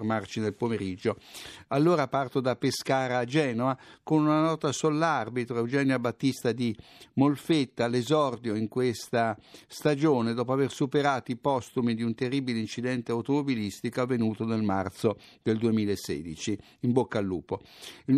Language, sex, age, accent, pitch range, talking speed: Italian, male, 60-79, native, 115-140 Hz, 135 wpm